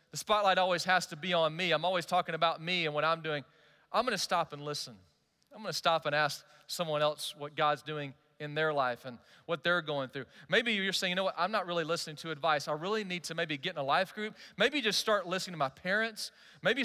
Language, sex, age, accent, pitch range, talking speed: English, male, 40-59, American, 150-180 Hz, 250 wpm